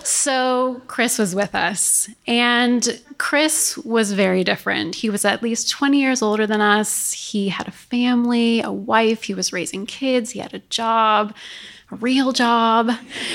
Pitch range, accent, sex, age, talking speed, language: 205-245 Hz, American, female, 30-49, 160 wpm, English